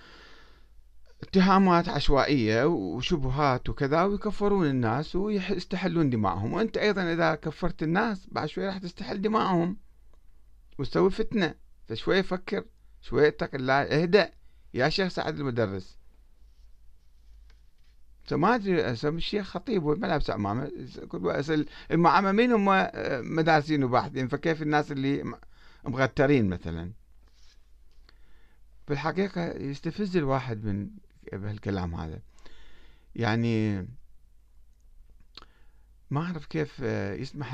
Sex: male